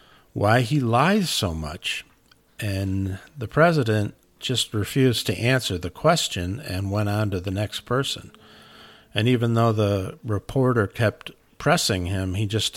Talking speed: 145 wpm